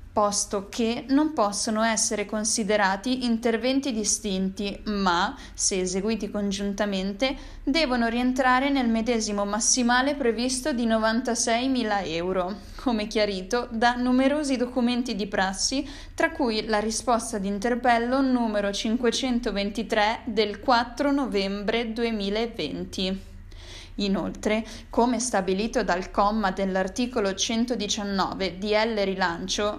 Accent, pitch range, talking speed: native, 200-245 Hz, 95 wpm